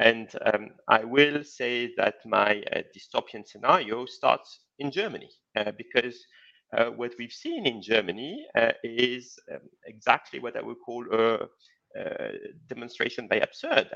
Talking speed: 145 wpm